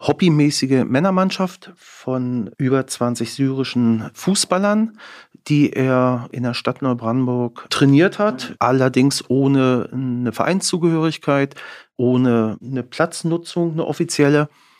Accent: German